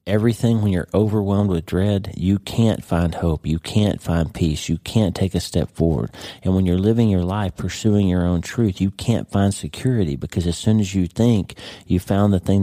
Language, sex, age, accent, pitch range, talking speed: English, male, 40-59, American, 85-100 Hz, 210 wpm